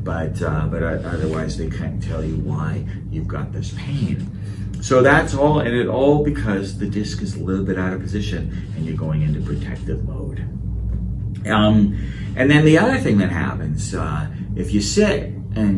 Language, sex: English, male